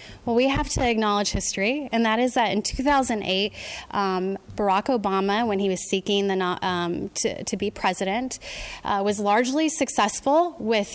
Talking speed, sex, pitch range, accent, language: 160 wpm, female, 195-250 Hz, American, English